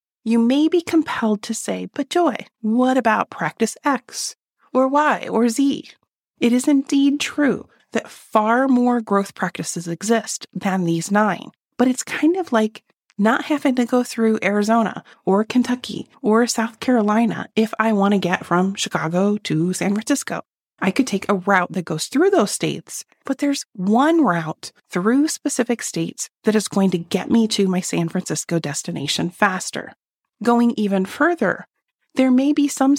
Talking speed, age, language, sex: 165 wpm, 30-49, English, female